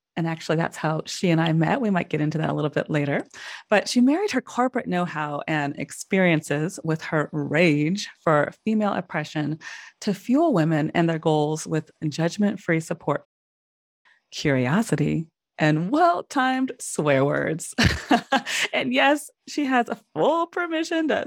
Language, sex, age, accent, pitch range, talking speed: English, female, 30-49, American, 160-220 Hz, 150 wpm